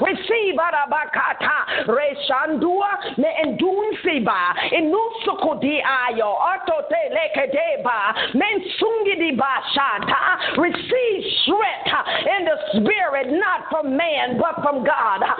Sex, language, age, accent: female, English, 40-59, American